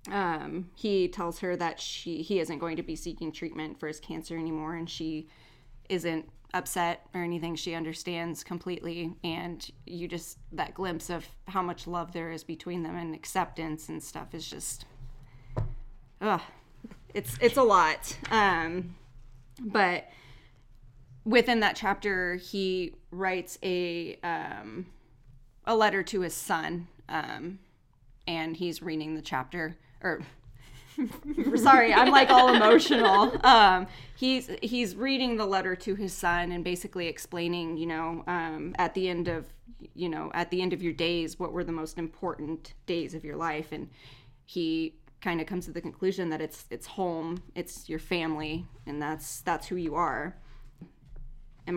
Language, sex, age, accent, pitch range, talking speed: English, female, 20-39, American, 155-180 Hz, 155 wpm